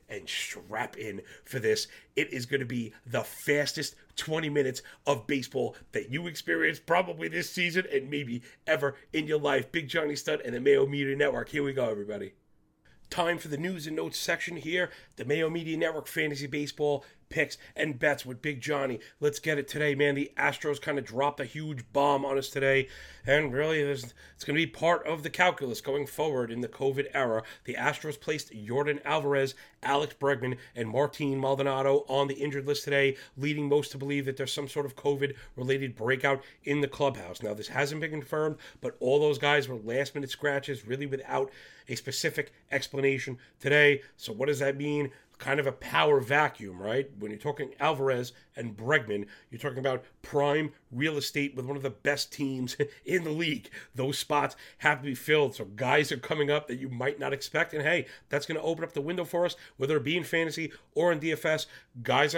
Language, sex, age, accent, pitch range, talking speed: English, male, 30-49, American, 135-155 Hz, 200 wpm